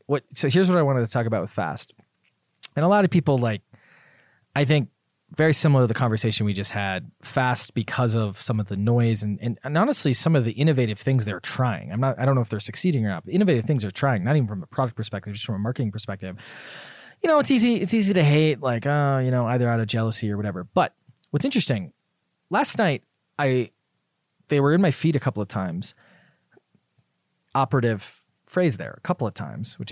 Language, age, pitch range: English, 20-39, 110-150 Hz